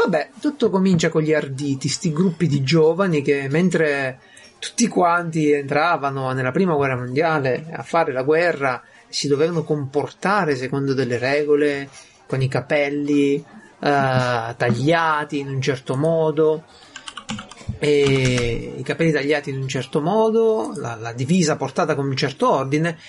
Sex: male